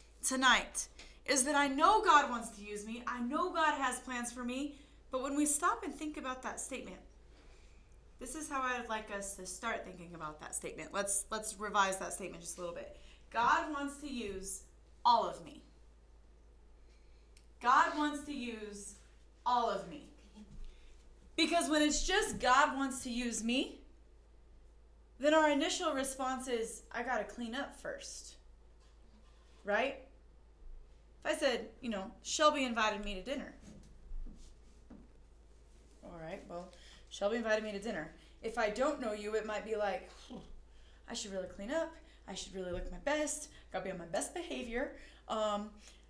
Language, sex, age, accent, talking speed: English, female, 20-39, American, 165 wpm